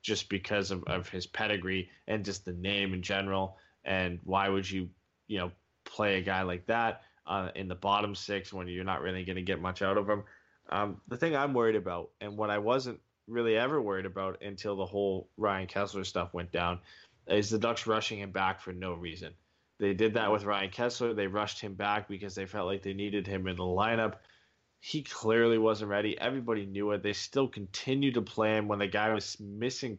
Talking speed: 215 wpm